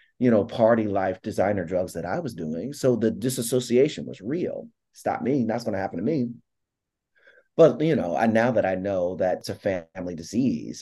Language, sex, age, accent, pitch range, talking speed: English, male, 30-49, American, 95-120 Hz, 195 wpm